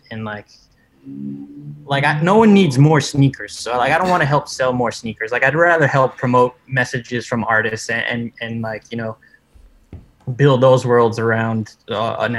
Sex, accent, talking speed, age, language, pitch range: male, American, 190 wpm, 20-39, English, 110-130 Hz